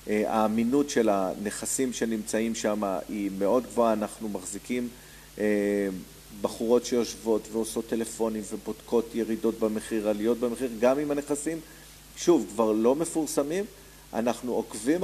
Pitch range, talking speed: 115-150 Hz, 115 wpm